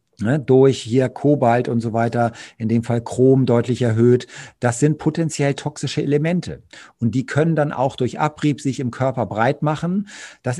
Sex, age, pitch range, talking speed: male, 50-69, 115-145 Hz, 170 wpm